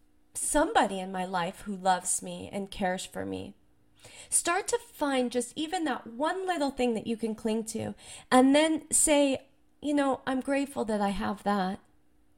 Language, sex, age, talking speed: English, female, 30-49, 175 wpm